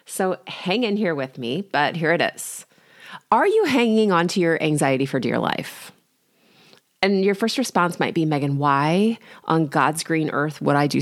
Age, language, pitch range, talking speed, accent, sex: 30-49, English, 160-225 Hz, 190 wpm, American, female